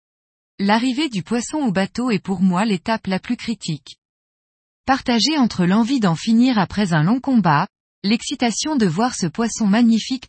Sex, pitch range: female, 180-245 Hz